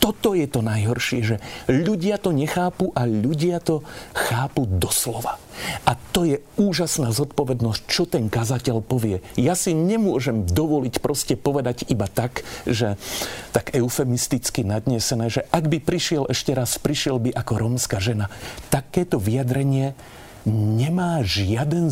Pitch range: 120-160 Hz